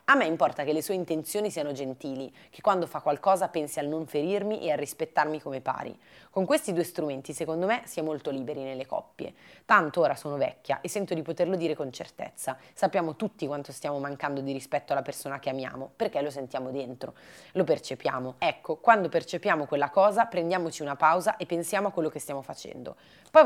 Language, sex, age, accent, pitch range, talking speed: Italian, female, 30-49, native, 145-180 Hz, 200 wpm